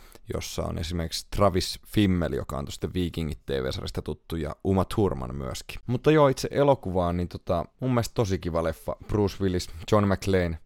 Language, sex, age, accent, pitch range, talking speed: Finnish, male, 30-49, native, 85-100 Hz, 180 wpm